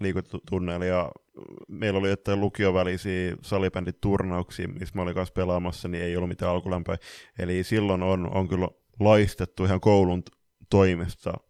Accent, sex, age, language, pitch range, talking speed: native, male, 20-39, Finnish, 90-110 Hz, 125 wpm